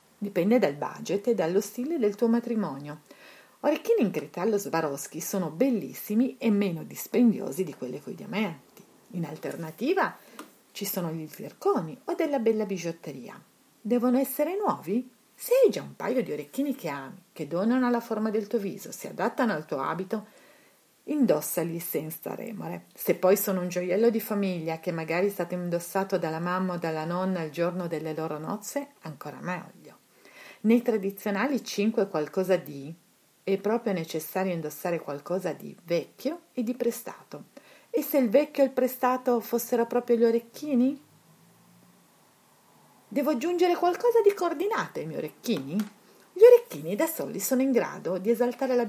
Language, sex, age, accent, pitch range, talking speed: Italian, female, 40-59, native, 175-245 Hz, 155 wpm